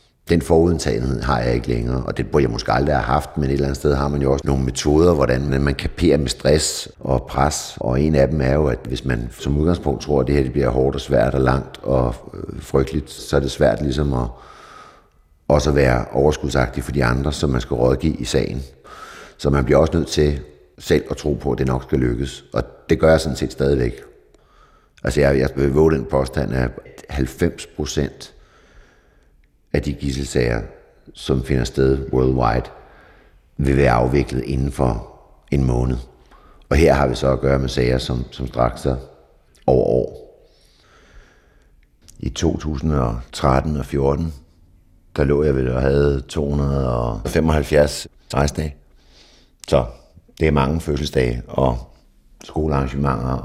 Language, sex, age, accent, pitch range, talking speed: Danish, male, 60-79, native, 65-75 Hz, 175 wpm